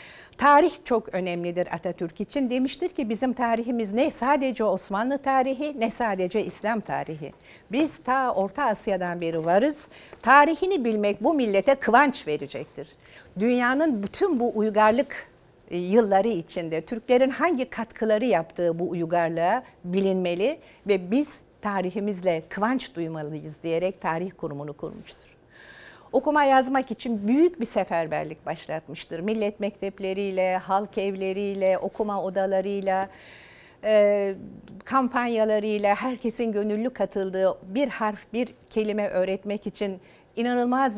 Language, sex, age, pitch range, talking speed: Turkish, female, 60-79, 175-235 Hz, 110 wpm